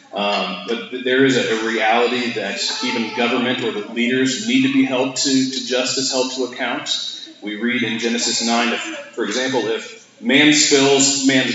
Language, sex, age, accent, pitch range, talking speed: English, male, 30-49, American, 115-140 Hz, 180 wpm